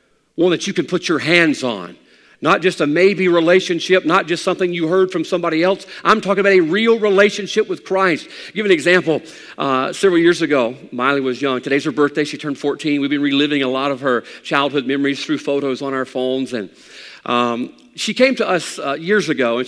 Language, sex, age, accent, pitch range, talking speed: English, male, 50-69, American, 145-210 Hz, 215 wpm